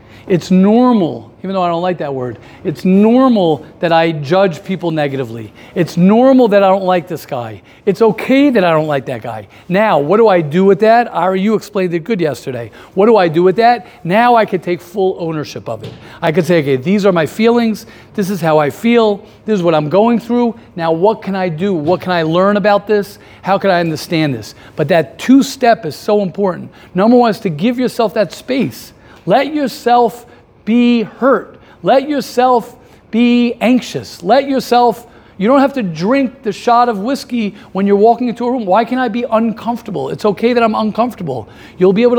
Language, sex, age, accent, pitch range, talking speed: English, male, 50-69, American, 165-235 Hz, 210 wpm